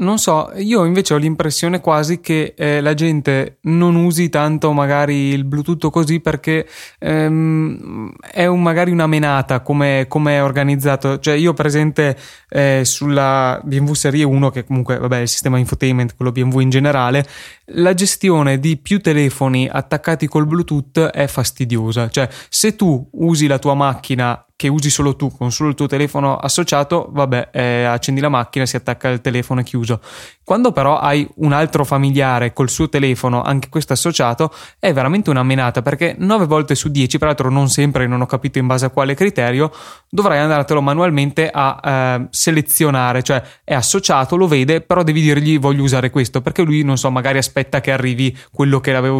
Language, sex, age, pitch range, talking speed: Italian, male, 20-39, 130-160 Hz, 175 wpm